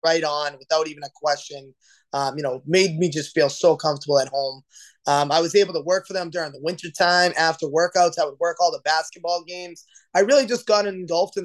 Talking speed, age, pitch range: 225 wpm, 20-39, 150-180 Hz